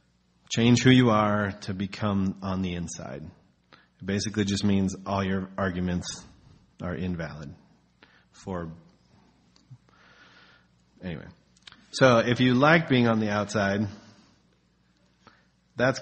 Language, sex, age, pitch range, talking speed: English, male, 30-49, 90-105 Hz, 110 wpm